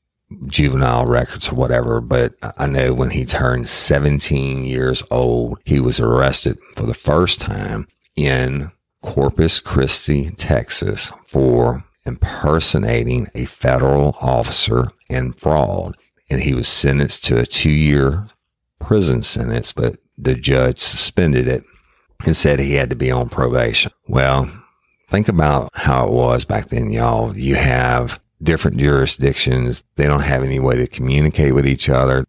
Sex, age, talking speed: male, 50-69, 140 wpm